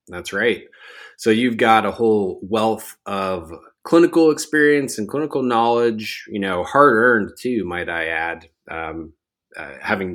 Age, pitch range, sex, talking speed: 20-39, 95-125 Hz, male, 150 wpm